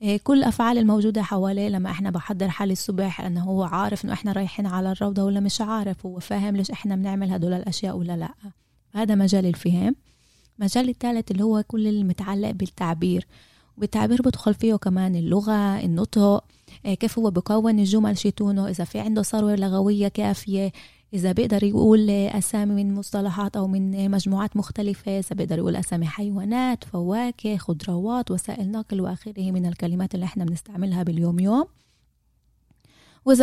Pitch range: 185-210 Hz